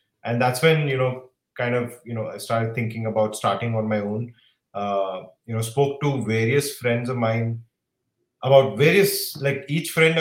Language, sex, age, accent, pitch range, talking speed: English, male, 30-49, Indian, 105-130 Hz, 180 wpm